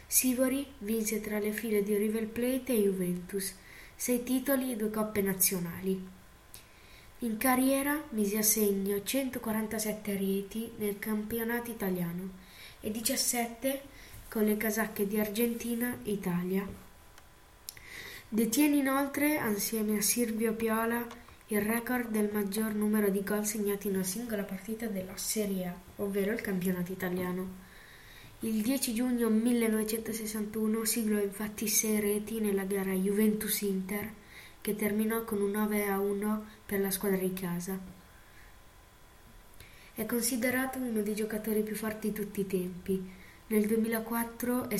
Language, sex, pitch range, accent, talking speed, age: Italian, female, 195-225 Hz, native, 130 wpm, 20-39